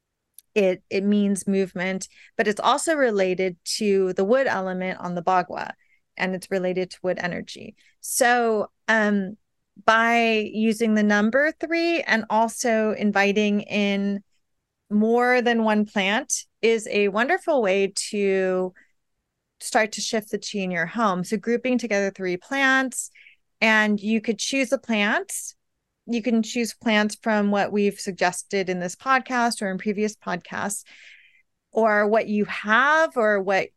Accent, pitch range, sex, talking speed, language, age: American, 195-235 Hz, female, 145 wpm, English, 30-49